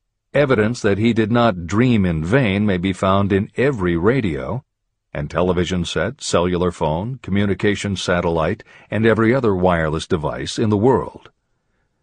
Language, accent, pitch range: English, American, 95-130 Hz